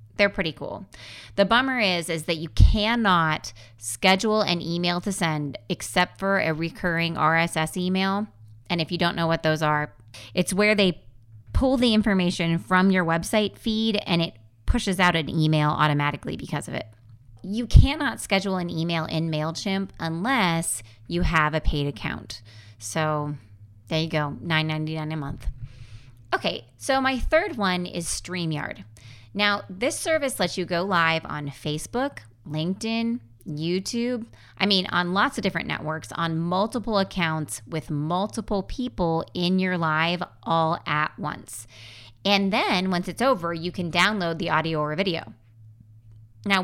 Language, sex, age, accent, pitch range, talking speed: English, female, 30-49, American, 150-195 Hz, 155 wpm